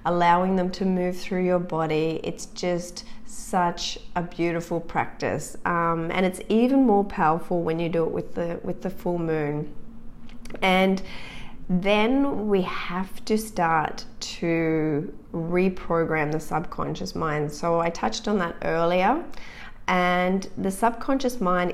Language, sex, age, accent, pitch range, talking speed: English, female, 30-49, Australian, 165-195 Hz, 135 wpm